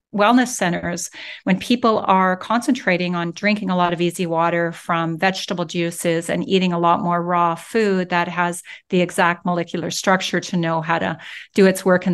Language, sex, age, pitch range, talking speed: English, female, 40-59, 175-205 Hz, 185 wpm